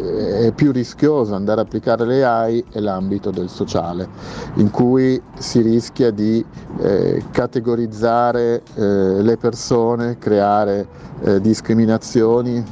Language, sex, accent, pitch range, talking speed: Italian, male, native, 100-120 Hz, 120 wpm